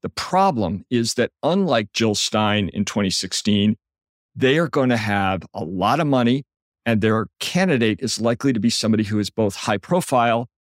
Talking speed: 175 wpm